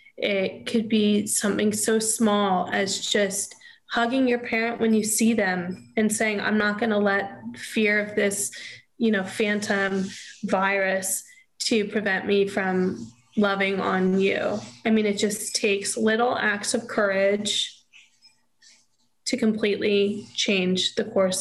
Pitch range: 200-230 Hz